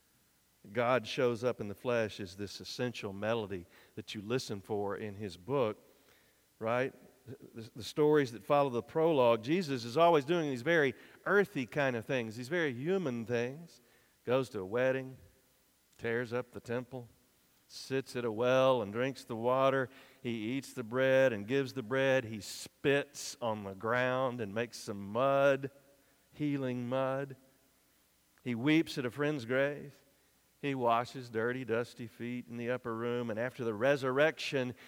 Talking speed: 160 wpm